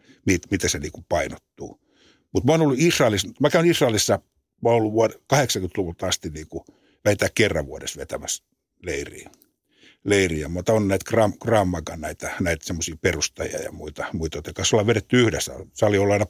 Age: 60-79